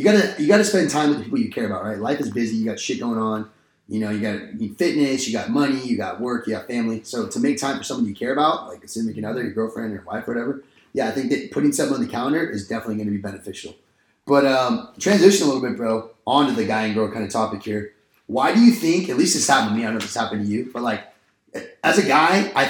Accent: American